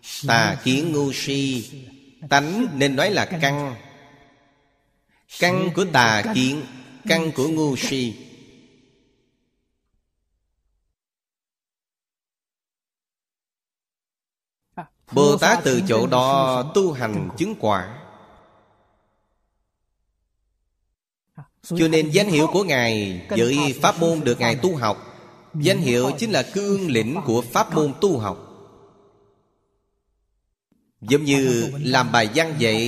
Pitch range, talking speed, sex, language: 110-140 Hz, 100 wpm, male, Vietnamese